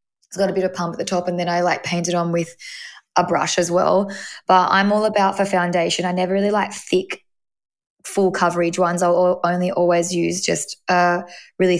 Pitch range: 175-190 Hz